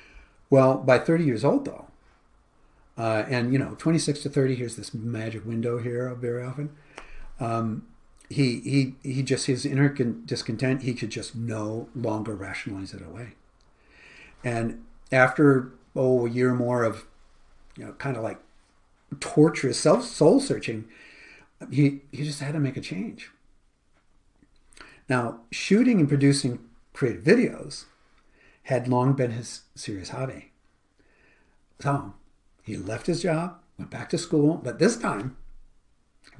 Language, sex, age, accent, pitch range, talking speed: English, male, 50-69, American, 115-145 Hz, 140 wpm